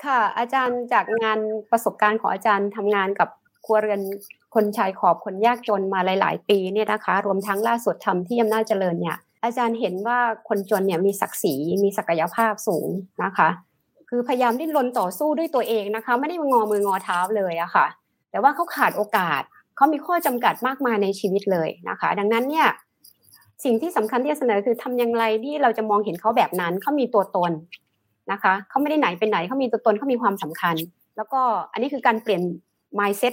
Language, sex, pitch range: Thai, female, 200-250 Hz